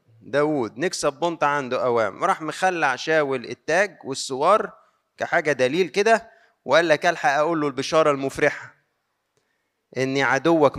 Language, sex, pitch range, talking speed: Arabic, male, 140-185 Hz, 120 wpm